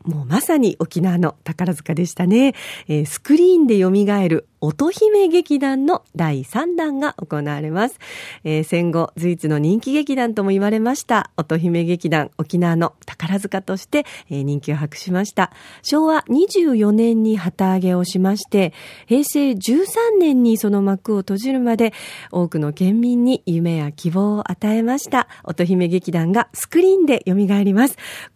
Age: 40-59